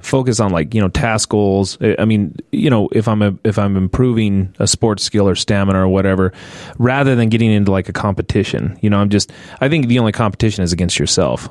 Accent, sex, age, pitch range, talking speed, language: American, male, 30-49, 95-115 Hz, 225 wpm, English